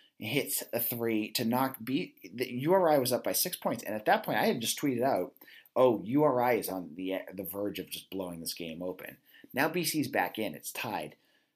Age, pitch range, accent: 30-49, 95-125 Hz, American